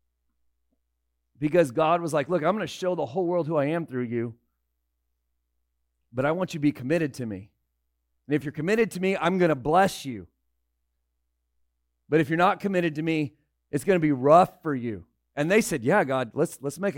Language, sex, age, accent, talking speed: English, male, 40-59, American, 210 wpm